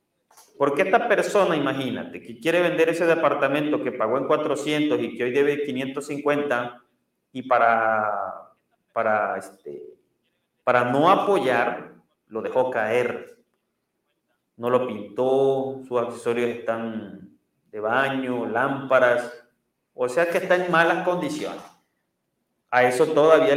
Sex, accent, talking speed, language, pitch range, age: male, Mexican, 120 wpm, Spanish, 130-175 Hz, 30-49